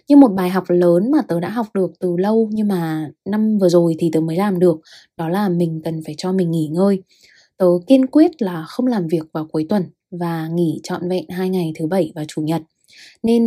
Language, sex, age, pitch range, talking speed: Vietnamese, female, 20-39, 165-220 Hz, 235 wpm